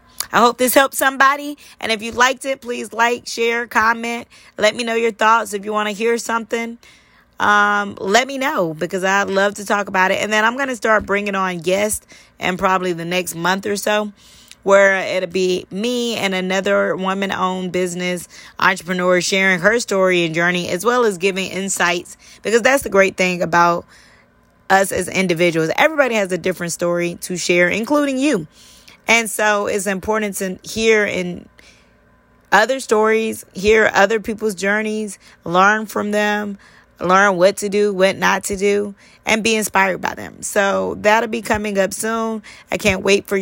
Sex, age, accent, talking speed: female, 20-39, American, 180 wpm